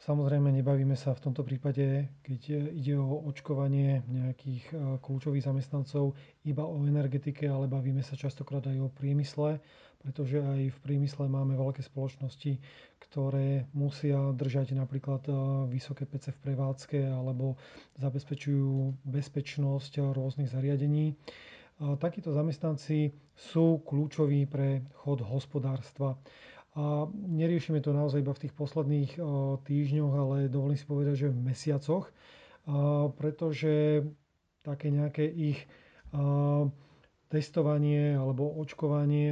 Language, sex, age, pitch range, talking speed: Slovak, male, 30-49, 135-150 Hz, 110 wpm